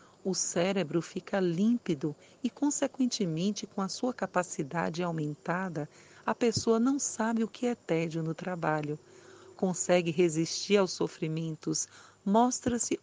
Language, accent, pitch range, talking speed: Portuguese, Brazilian, 165-220 Hz, 120 wpm